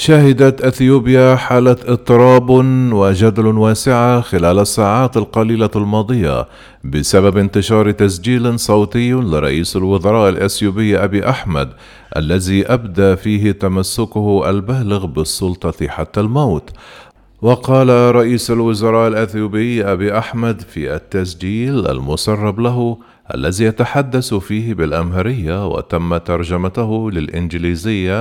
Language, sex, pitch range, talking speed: Arabic, male, 95-120 Hz, 95 wpm